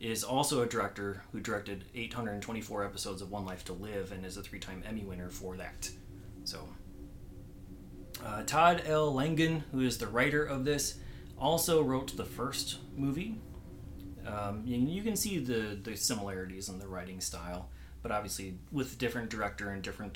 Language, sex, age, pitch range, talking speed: English, male, 30-49, 95-135 Hz, 165 wpm